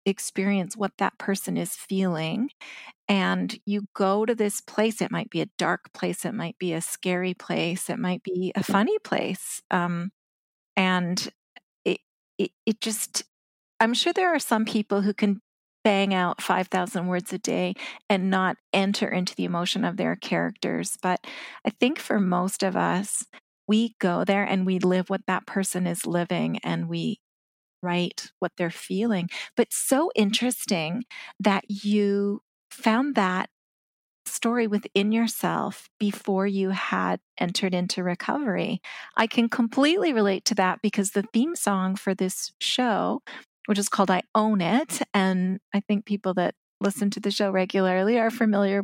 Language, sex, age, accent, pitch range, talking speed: English, female, 40-59, American, 185-220 Hz, 160 wpm